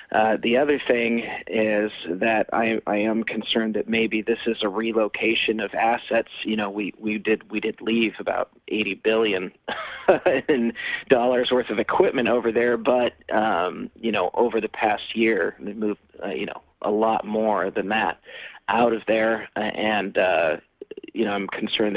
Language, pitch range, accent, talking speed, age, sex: English, 105-125 Hz, American, 170 wpm, 40-59, male